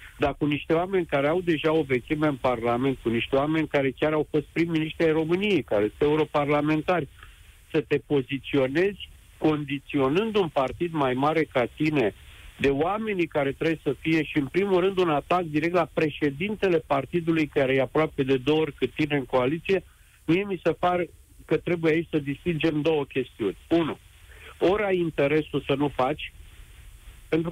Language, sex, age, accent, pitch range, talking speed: Romanian, male, 50-69, native, 135-175 Hz, 170 wpm